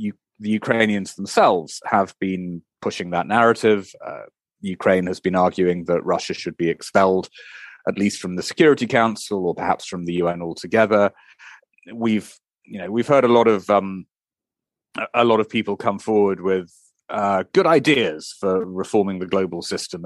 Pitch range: 95-115 Hz